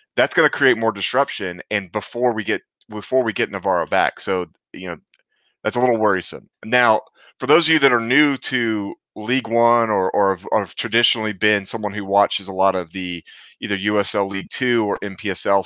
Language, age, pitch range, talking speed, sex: English, 30-49, 100-125 Hz, 200 wpm, male